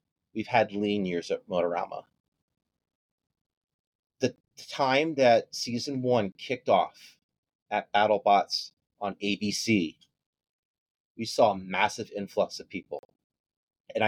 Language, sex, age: English, male, 30-49